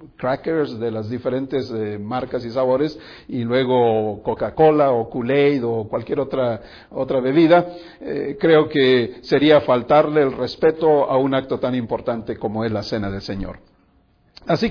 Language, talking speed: English, 160 wpm